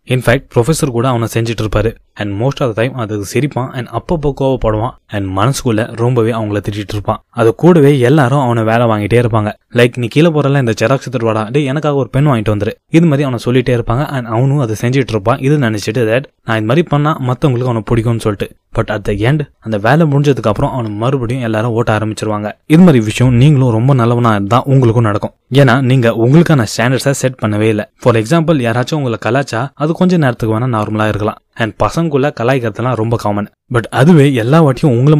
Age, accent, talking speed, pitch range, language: 20-39, native, 105 wpm, 110-140 Hz, Tamil